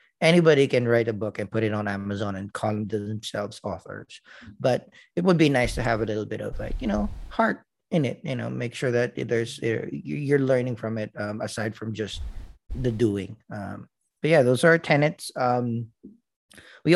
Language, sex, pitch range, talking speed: English, male, 115-145 Hz, 200 wpm